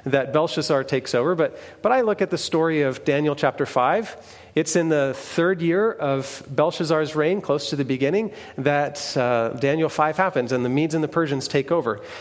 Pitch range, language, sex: 140-175 Hz, English, male